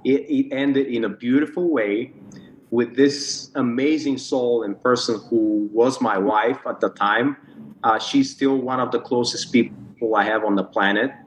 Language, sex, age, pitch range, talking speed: English, male, 30-49, 115-145 Hz, 175 wpm